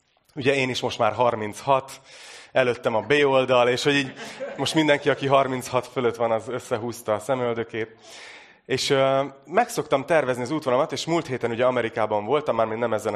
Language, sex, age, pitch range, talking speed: Hungarian, male, 30-49, 110-135 Hz, 170 wpm